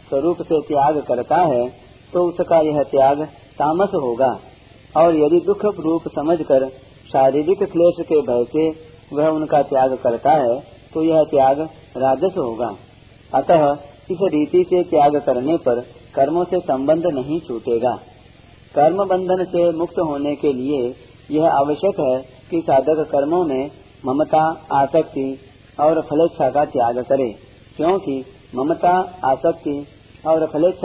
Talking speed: 135 wpm